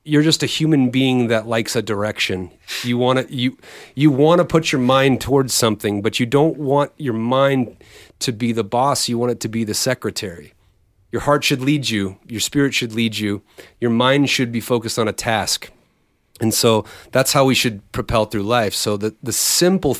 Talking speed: 205 wpm